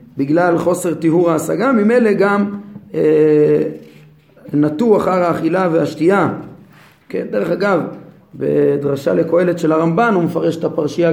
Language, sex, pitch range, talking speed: Hebrew, male, 150-185 Hz, 120 wpm